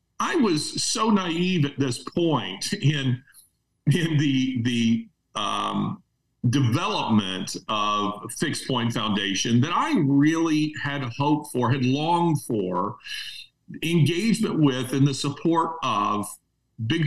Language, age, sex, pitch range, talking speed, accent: English, 50-69, male, 120-160 Hz, 115 wpm, American